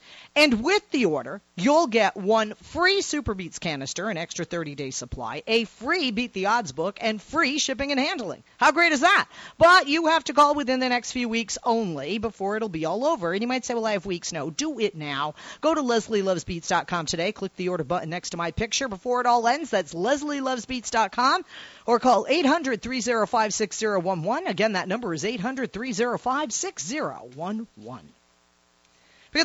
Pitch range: 155-230 Hz